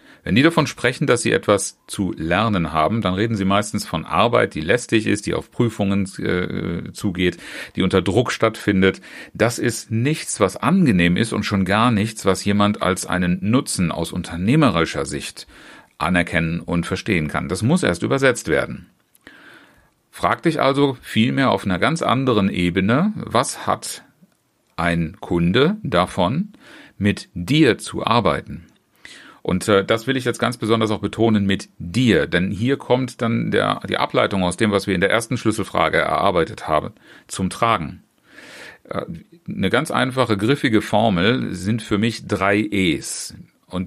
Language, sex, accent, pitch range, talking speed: German, male, German, 95-115 Hz, 155 wpm